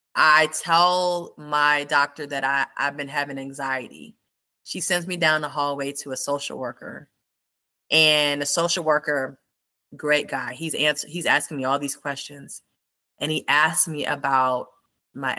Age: 20-39